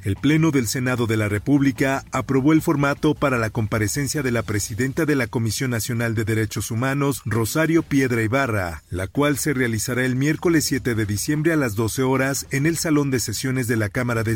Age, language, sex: 40-59, Spanish, male